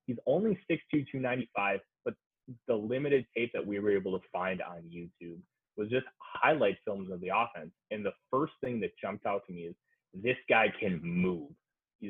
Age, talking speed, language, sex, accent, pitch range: 20-39, 205 wpm, English, male, American, 105-135 Hz